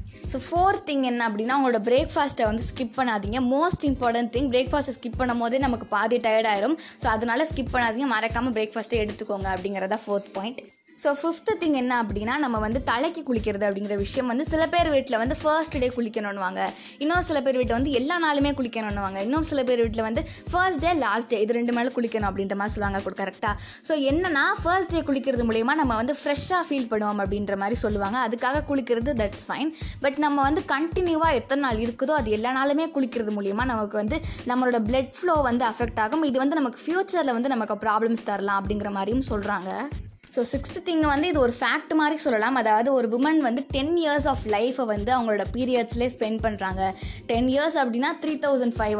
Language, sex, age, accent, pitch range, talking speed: Tamil, female, 20-39, native, 220-285 Hz, 190 wpm